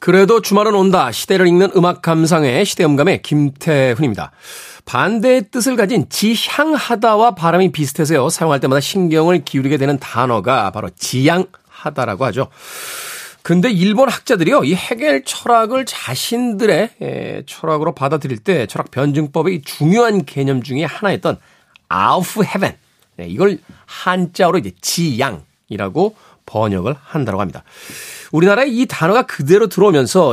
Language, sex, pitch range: Korean, male, 140-205 Hz